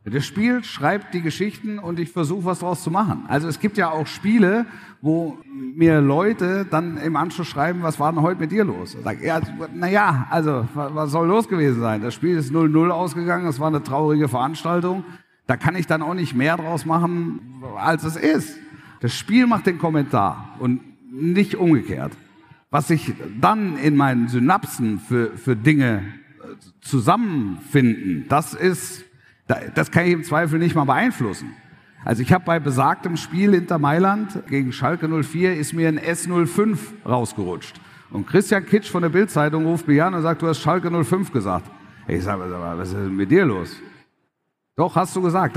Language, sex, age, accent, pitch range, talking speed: German, male, 50-69, German, 145-175 Hz, 180 wpm